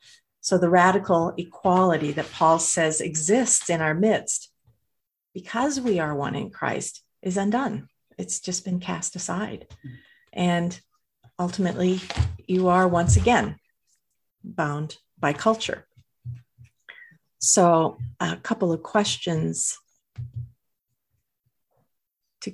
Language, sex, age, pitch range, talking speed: English, female, 50-69, 130-195 Hz, 105 wpm